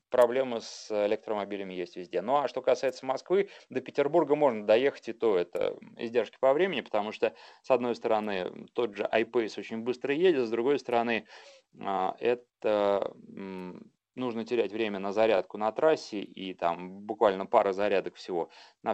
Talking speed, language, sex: 155 wpm, Russian, male